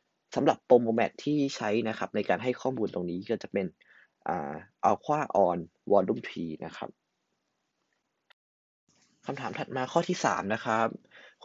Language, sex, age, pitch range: Thai, male, 30-49, 100-135 Hz